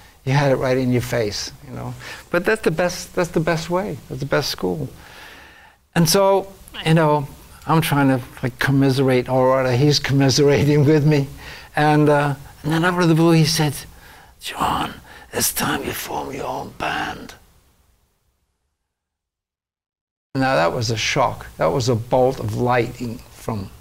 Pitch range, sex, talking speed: 115-155 Hz, male, 165 wpm